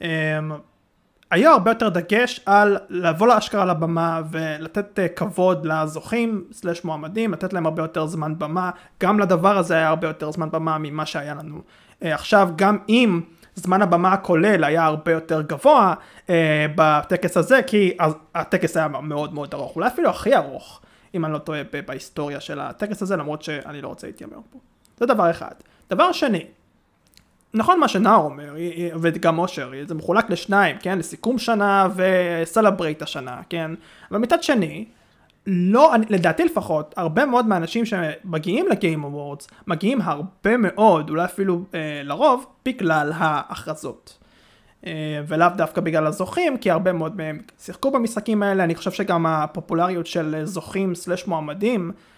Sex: male